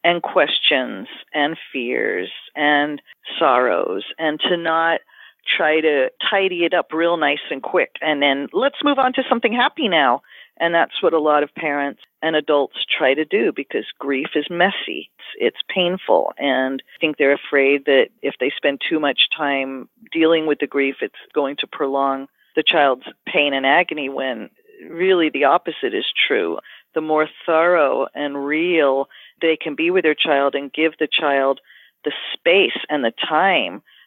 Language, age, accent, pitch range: English, 40-59, American, 145-180 Hz